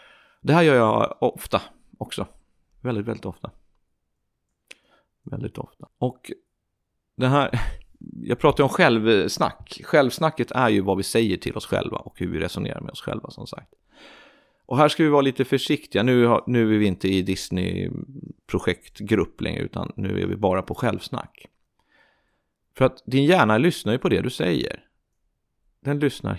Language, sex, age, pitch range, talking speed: Swedish, male, 30-49, 95-120 Hz, 155 wpm